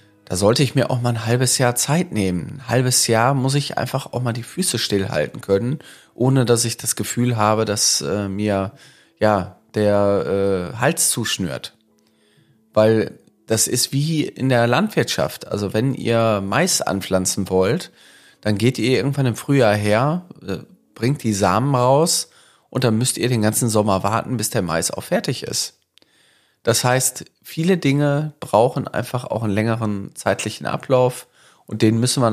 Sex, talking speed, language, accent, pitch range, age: male, 170 wpm, German, German, 105-130 Hz, 30-49